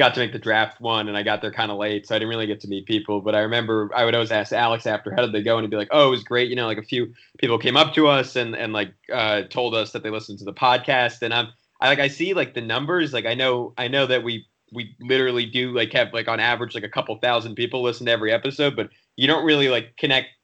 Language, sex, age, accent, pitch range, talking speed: English, male, 20-39, American, 110-130 Hz, 300 wpm